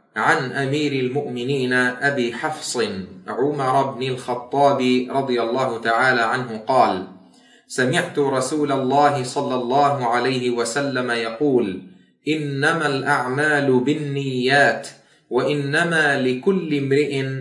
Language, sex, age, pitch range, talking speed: Arabic, male, 30-49, 120-150 Hz, 95 wpm